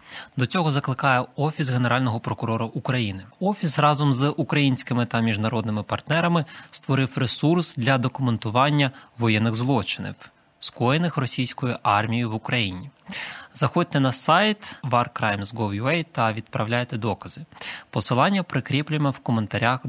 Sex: male